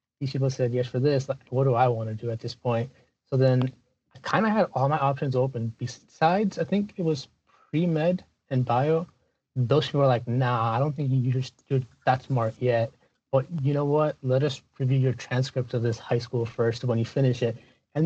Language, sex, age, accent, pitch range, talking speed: English, male, 30-49, American, 120-140 Hz, 215 wpm